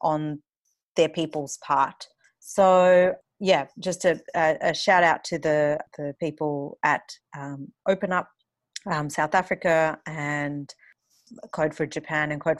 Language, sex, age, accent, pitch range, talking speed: English, female, 30-49, Australian, 155-190 Hz, 135 wpm